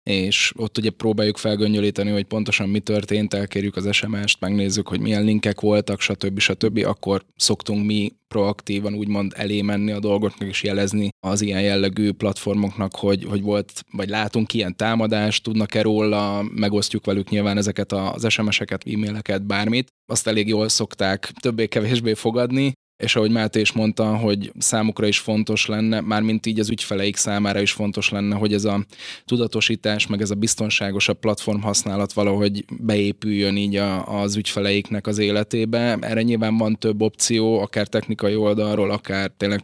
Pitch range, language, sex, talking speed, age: 100-110 Hz, Hungarian, male, 155 wpm, 10-29